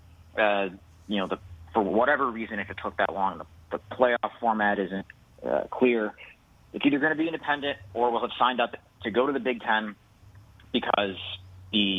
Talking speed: 190 wpm